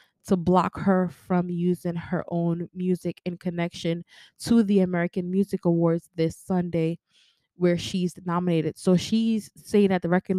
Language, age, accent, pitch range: English, 20-39, American, 175-195 Hz